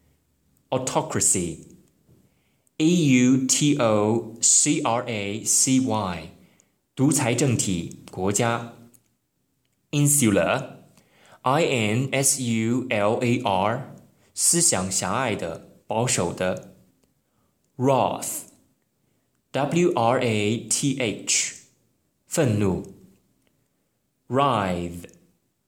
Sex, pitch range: male, 105-135 Hz